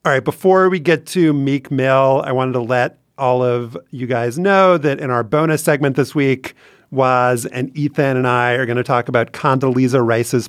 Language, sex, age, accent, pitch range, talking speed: English, male, 40-59, American, 120-150 Hz, 205 wpm